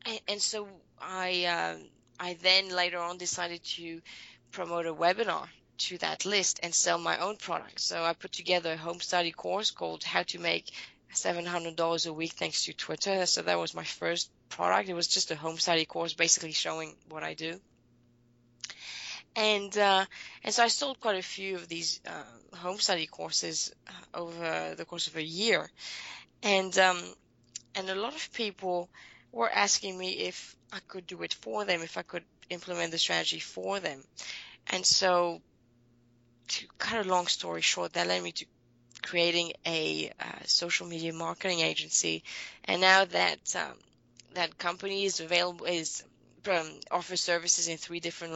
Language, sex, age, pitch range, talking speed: English, female, 20-39, 120-185 Hz, 170 wpm